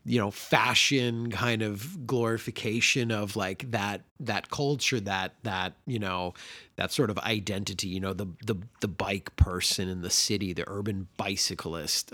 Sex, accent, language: male, American, English